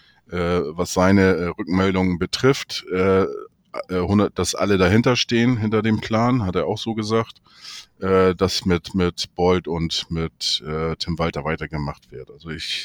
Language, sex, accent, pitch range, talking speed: German, male, German, 90-105 Hz, 130 wpm